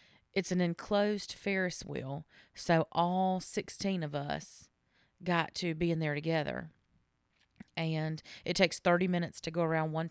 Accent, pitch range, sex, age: American, 170-190 Hz, female, 30-49